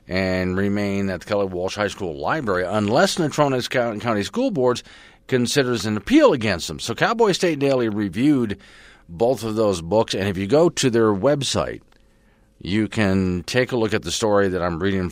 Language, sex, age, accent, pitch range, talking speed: English, male, 50-69, American, 90-120 Hz, 185 wpm